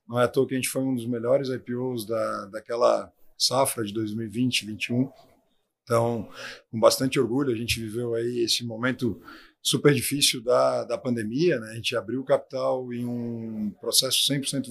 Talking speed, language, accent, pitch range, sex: 170 wpm, Portuguese, Brazilian, 120-140 Hz, male